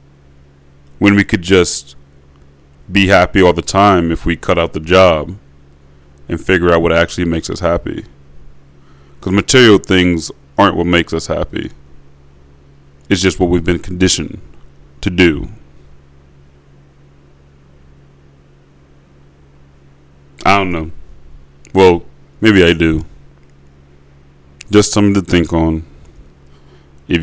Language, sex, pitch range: English, male, 70-90 Hz